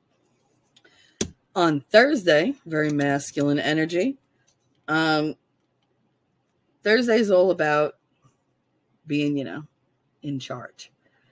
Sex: female